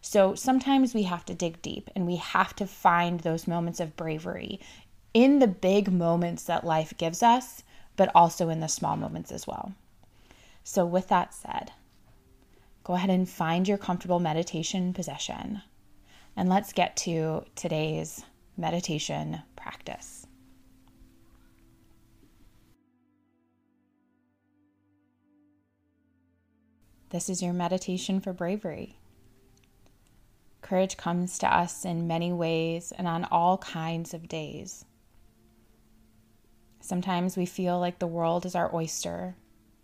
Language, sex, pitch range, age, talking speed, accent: English, female, 110-180 Hz, 20-39, 120 wpm, American